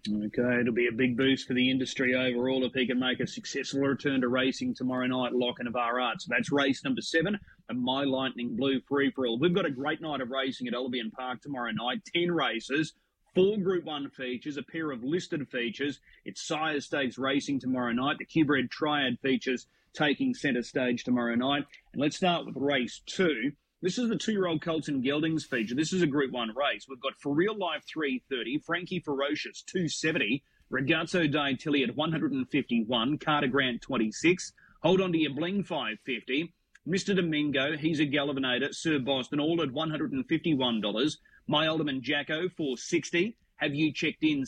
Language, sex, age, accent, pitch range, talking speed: English, male, 30-49, Australian, 130-160 Hz, 180 wpm